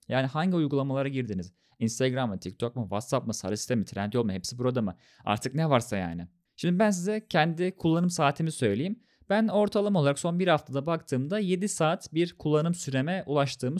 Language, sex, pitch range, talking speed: Turkish, male, 125-185 Hz, 180 wpm